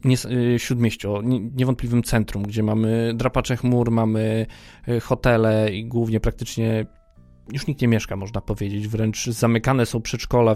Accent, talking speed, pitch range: native, 135 wpm, 110-130 Hz